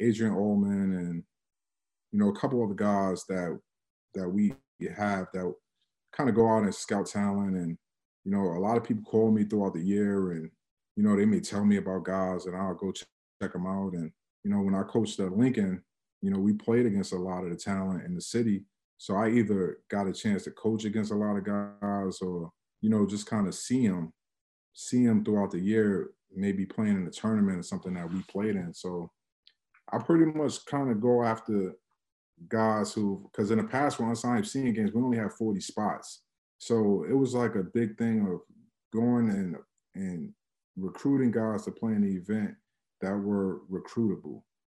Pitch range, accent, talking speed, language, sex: 95-115 Hz, American, 205 wpm, English, male